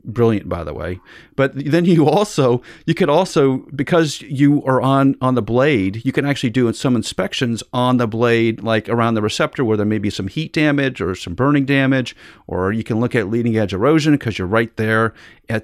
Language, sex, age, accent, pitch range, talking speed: English, male, 40-59, American, 110-150 Hz, 210 wpm